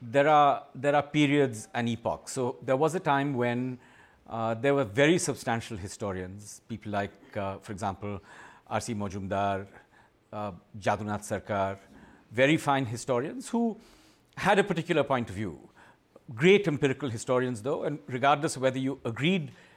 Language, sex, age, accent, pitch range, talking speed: English, male, 50-69, Indian, 120-160 Hz, 150 wpm